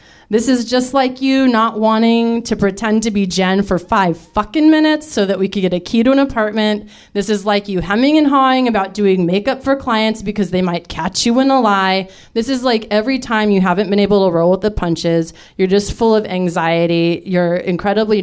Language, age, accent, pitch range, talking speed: English, 30-49, American, 170-220 Hz, 220 wpm